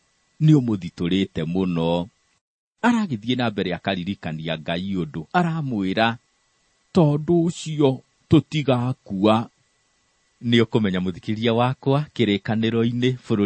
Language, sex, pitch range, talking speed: English, male, 110-160 Hz, 100 wpm